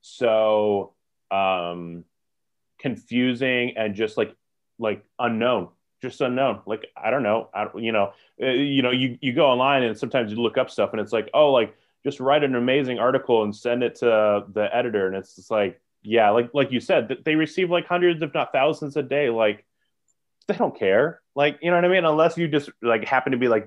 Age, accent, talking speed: 20-39, American, 210 wpm